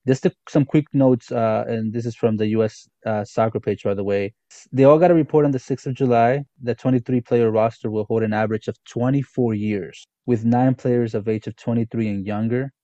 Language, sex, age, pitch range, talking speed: English, male, 20-39, 110-130 Hz, 220 wpm